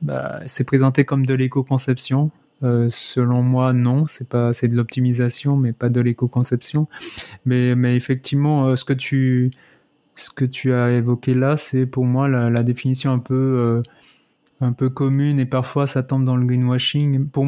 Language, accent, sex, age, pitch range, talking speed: French, French, male, 30-49, 125-135 Hz, 180 wpm